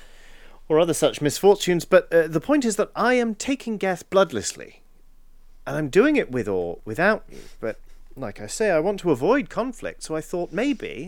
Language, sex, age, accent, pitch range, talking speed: English, male, 40-59, British, 150-230 Hz, 195 wpm